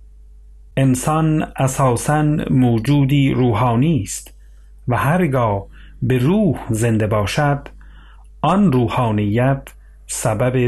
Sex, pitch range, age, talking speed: male, 105-150 Hz, 40-59, 80 wpm